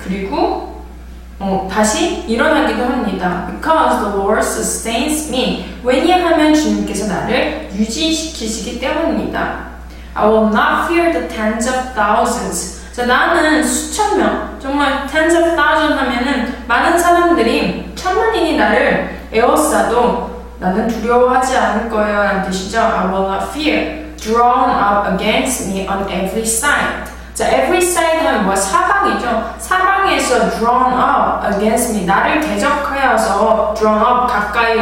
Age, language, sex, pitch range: 20-39, Korean, female, 200-300 Hz